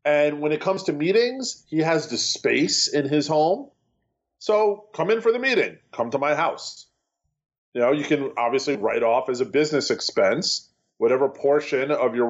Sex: male